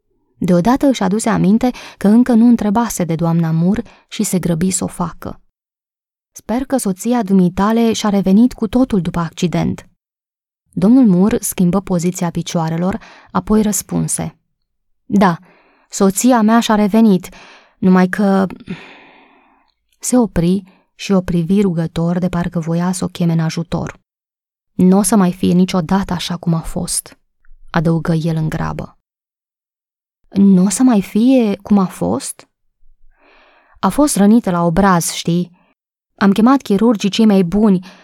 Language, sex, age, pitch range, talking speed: Romanian, female, 20-39, 175-220 Hz, 140 wpm